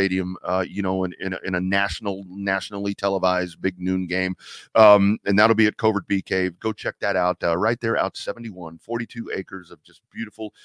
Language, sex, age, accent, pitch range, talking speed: English, male, 40-59, American, 95-115 Hz, 210 wpm